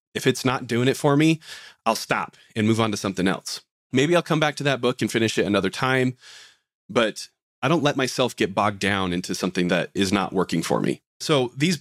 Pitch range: 110-140 Hz